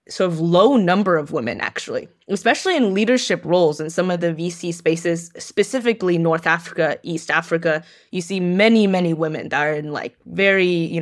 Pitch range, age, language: 165-190 Hz, 20-39, English